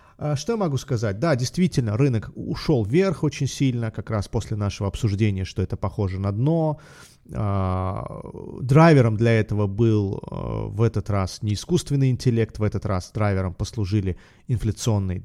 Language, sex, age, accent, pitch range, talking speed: Russian, male, 30-49, native, 105-135 Hz, 145 wpm